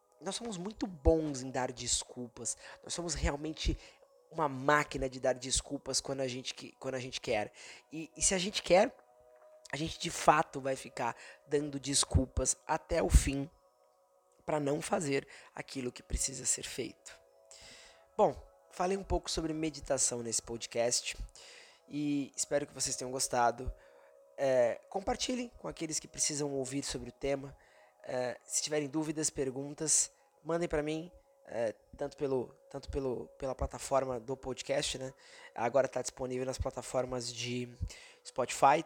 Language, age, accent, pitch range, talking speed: Portuguese, 20-39, Brazilian, 125-150 Hz, 145 wpm